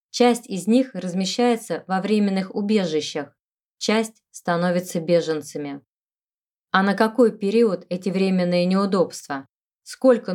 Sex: female